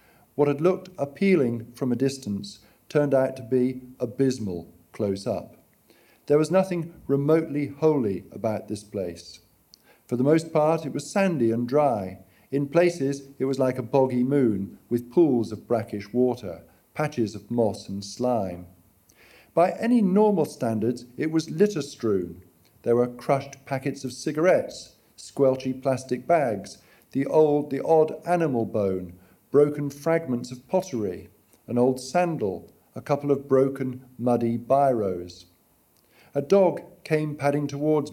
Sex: male